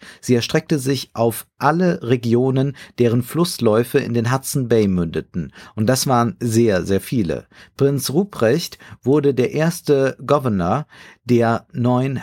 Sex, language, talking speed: male, German, 135 wpm